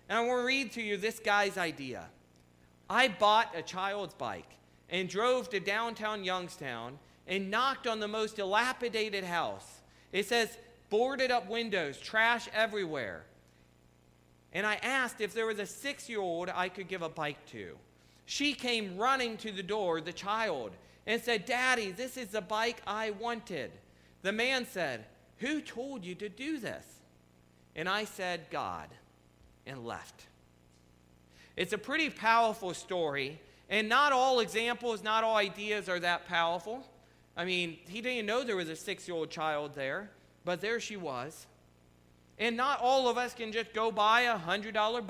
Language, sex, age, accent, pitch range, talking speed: English, male, 40-59, American, 155-225 Hz, 160 wpm